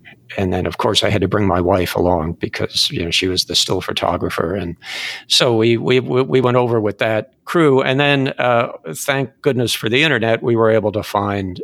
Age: 50-69